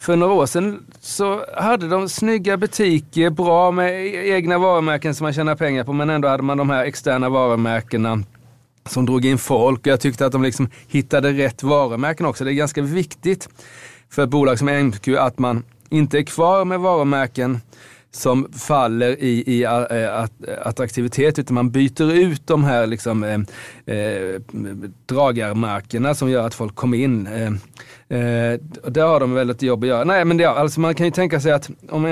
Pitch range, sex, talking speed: 120-150 Hz, male, 175 wpm